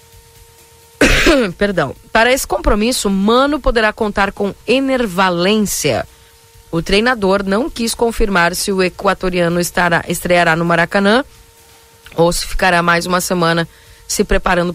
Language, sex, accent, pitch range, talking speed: Portuguese, female, Brazilian, 160-205 Hz, 120 wpm